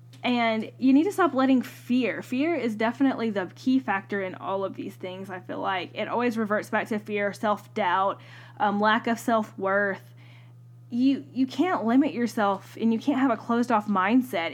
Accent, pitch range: American, 205-250 Hz